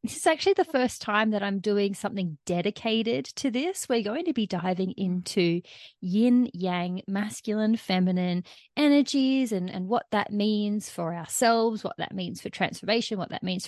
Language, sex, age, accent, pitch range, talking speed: English, female, 30-49, Australian, 180-235 Hz, 170 wpm